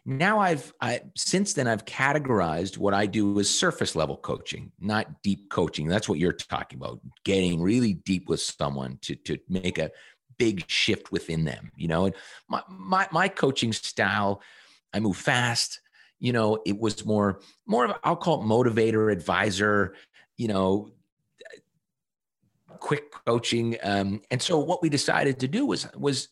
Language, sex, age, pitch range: English, male, 40-59, 95-125 Hz